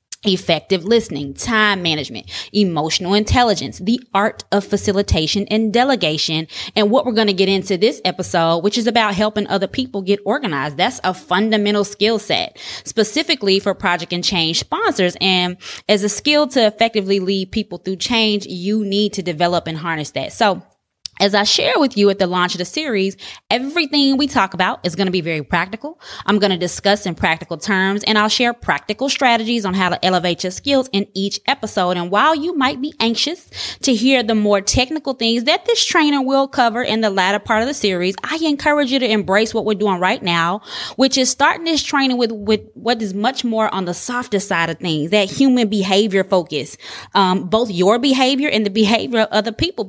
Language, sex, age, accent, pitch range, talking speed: English, female, 20-39, American, 185-240 Hz, 200 wpm